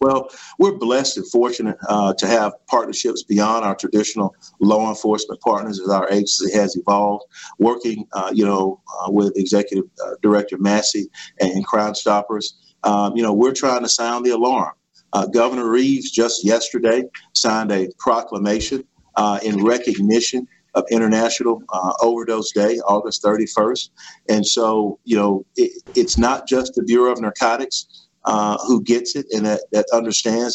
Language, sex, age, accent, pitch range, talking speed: English, male, 50-69, American, 105-125 Hz, 155 wpm